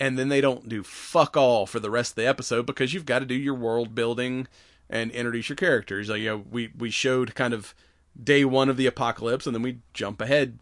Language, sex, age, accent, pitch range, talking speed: English, male, 30-49, American, 100-125 Hz, 235 wpm